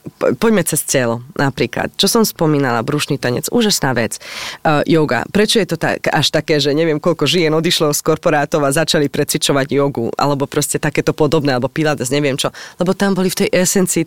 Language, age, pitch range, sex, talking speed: Slovak, 20-39, 140-180 Hz, female, 190 wpm